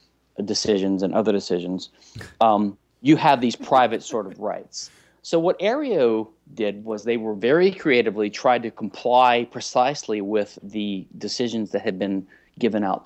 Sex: male